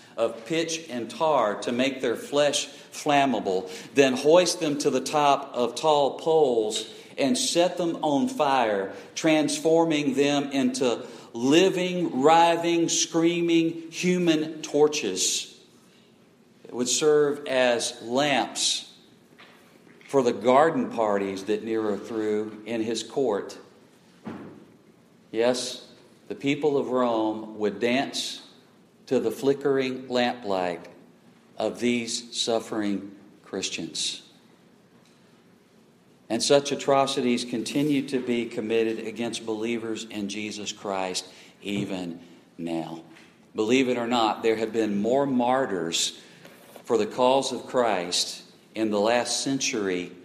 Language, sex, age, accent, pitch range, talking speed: English, male, 50-69, American, 110-145 Hz, 110 wpm